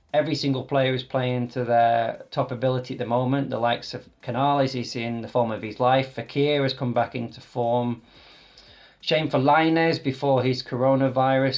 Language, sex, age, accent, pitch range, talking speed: English, male, 20-39, British, 125-140 Hz, 180 wpm